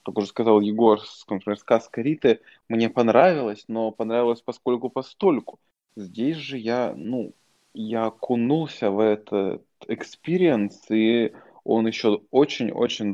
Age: 20-39